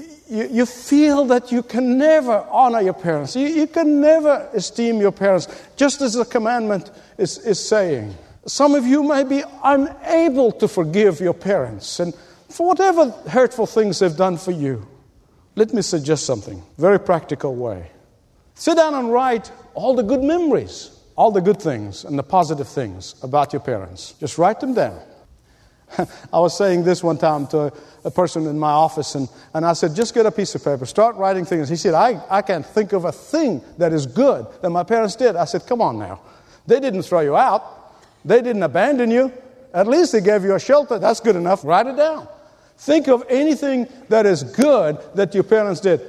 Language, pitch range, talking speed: English, 170-265 Hz, 195 wpm